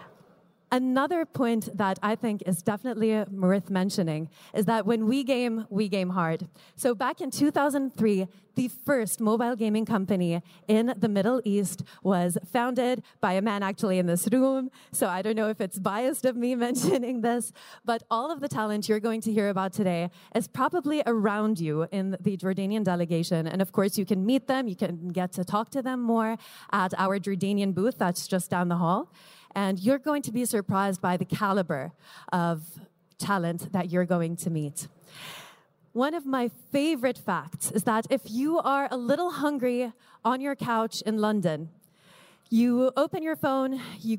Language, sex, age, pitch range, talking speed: English, female, 30-49, 185-245 Hz, 180 wpm